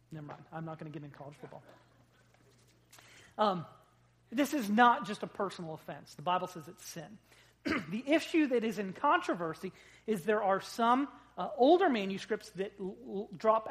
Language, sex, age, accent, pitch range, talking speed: English, male, 30-49, American, 170-235 Hz, 165 wpm